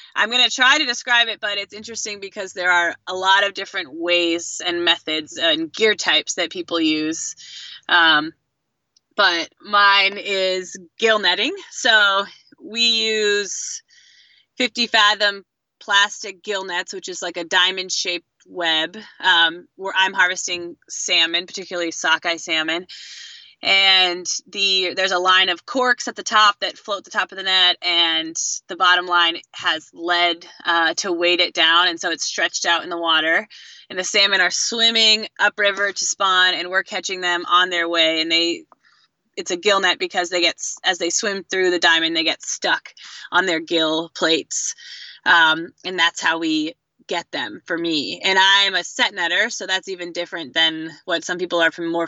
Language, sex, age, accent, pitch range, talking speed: English, female, 20-39, American, 165-200 Hz, 175 wpm